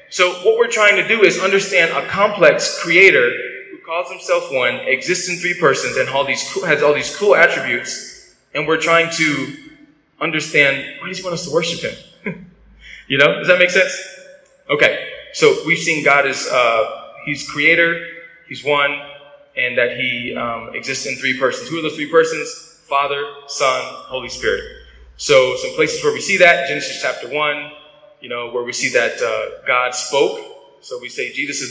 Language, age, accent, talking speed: English, 20-39, American, 185 wpm